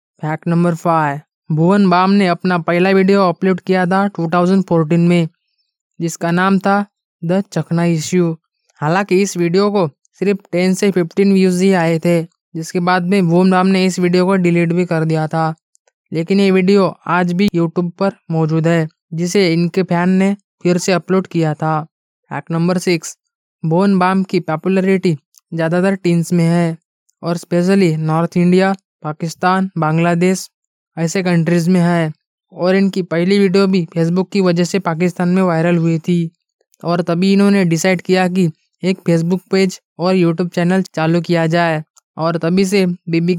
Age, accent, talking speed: 20-39, native, 165 wpm